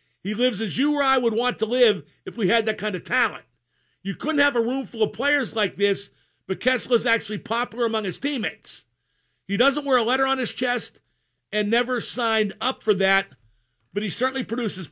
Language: English